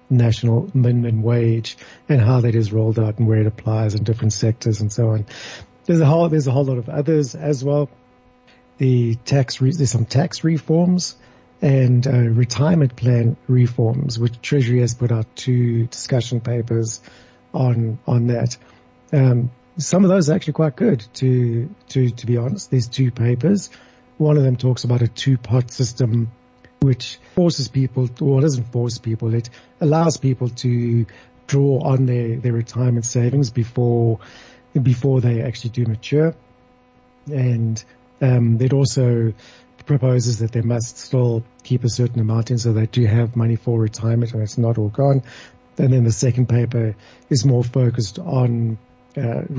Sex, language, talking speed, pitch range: male, English, 165 wpm, 115-135 Hz